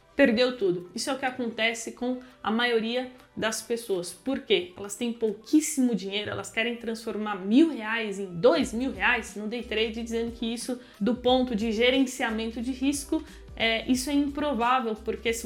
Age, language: 20-39, Portuguese